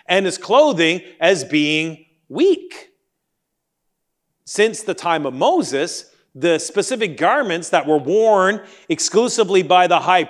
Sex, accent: male, American